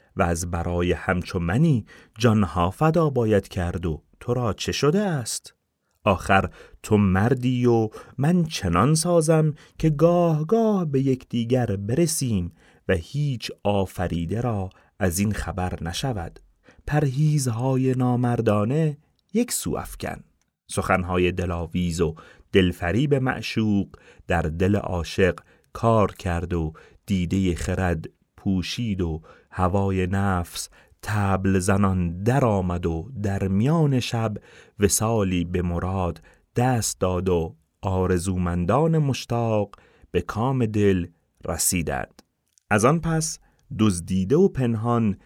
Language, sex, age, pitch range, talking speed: Persian, male, 30-49, 90-130 Hz, 110 wpm